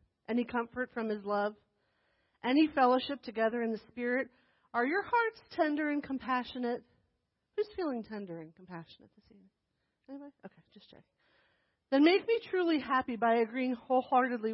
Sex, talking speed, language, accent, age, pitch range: female, 150 wpm, English, American, 40-59, 205-265 Hz